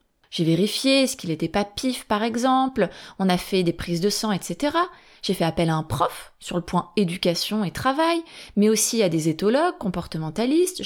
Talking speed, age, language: 195 wpm, 30-49, French